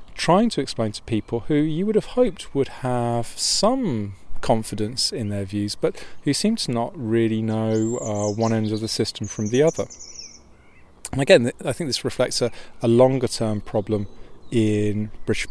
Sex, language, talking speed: male, English, 175 wpm